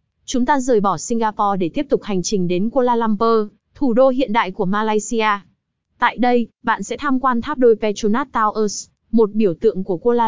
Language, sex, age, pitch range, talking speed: Vietnamese, female, 20-39, 200-245 Hz, 200 wpm